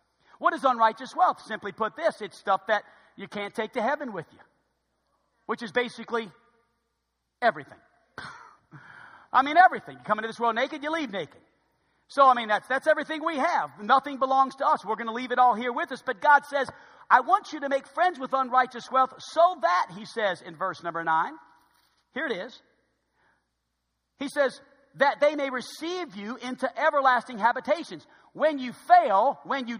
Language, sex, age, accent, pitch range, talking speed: English, male, 50-69, American, 210-285 Hz, 185 wpm